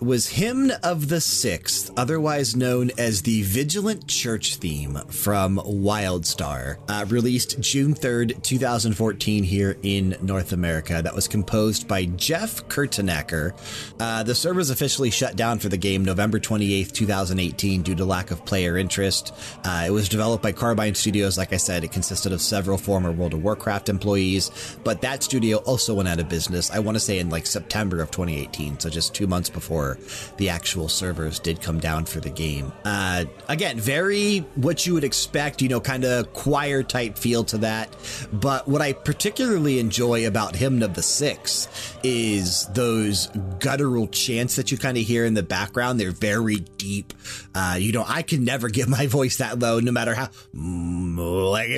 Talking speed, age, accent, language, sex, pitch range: 175 wpm, 30-49, American, English, male, 95-130 Hz